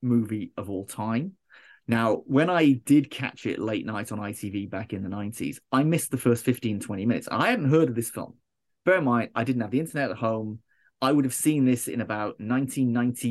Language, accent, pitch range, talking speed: English, British, 115-145 Hz, 220 wpm